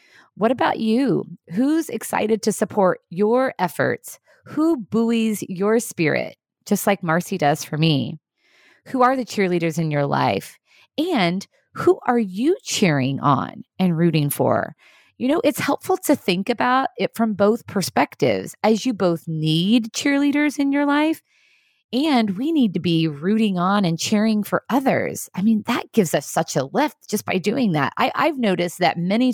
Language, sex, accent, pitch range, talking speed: English, female, American, 165-235 Hz, 165 wpm